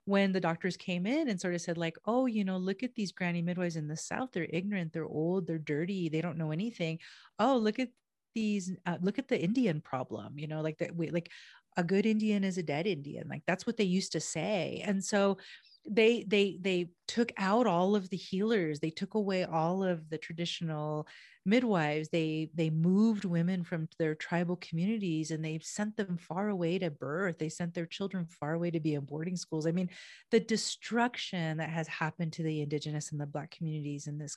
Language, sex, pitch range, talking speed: English, female, 160-205 Hz, 210 wpm